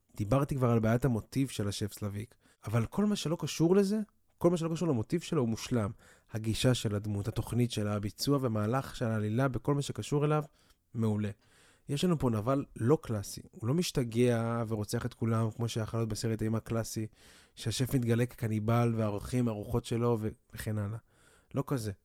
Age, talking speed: 20-39, 175 wpm